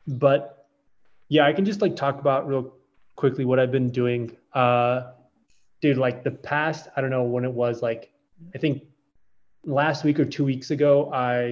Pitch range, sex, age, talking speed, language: 125-155 Hz, male, 20-39, 180 wpm, English